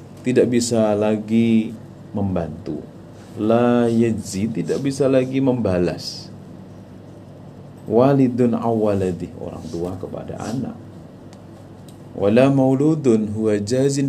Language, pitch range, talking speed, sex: Indonesian, 95-135 Hz, 85 wpm, male